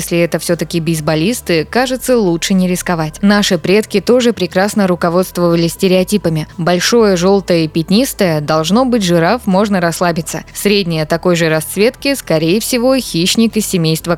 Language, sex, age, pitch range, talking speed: Russian, female, 20-39, 175-225 Hz, 135 wpm